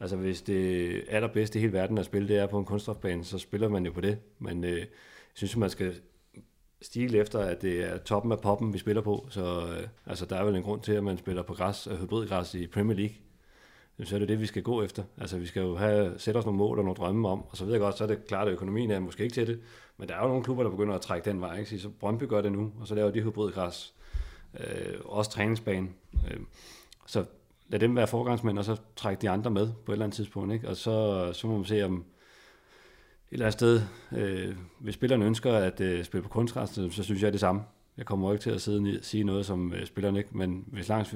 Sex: male